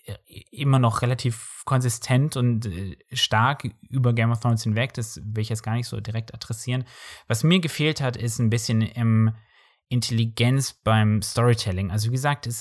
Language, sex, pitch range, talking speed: German, male, 115-140 Hz, 165 wpm